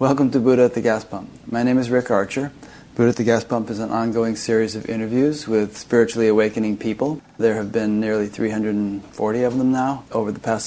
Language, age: English, 30-49